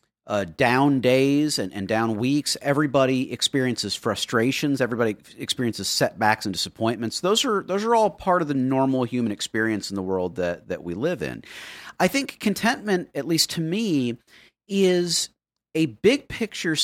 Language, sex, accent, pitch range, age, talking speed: English, male, American, 110-175 Hz, 40-59, 160 wpm